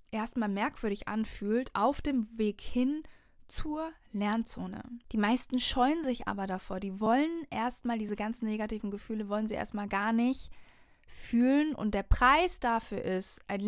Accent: German